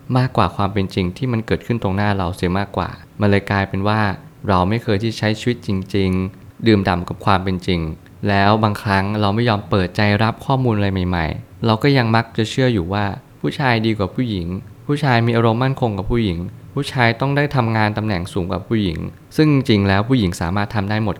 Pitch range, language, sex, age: 95-115 Hz, Thai, male, 20-39